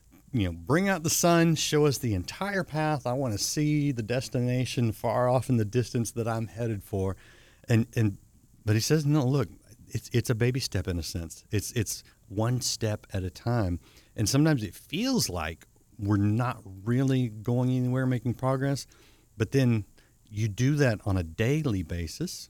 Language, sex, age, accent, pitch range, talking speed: English, male, 50-69, American, 95-125 Hz, 185 wpm